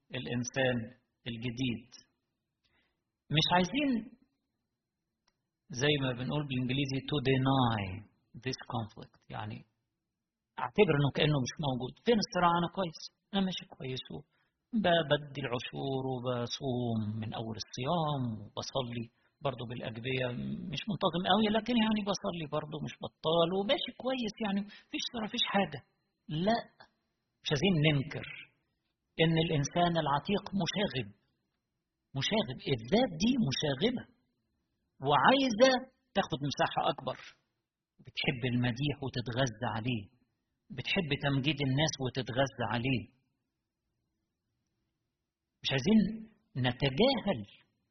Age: 50-69